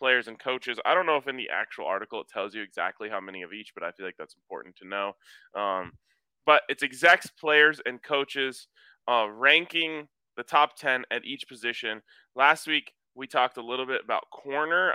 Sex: male